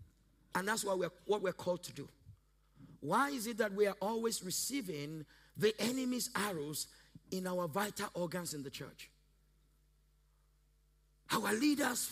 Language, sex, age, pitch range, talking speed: English, male, 50-69, 150-230 Hz, 140 wpm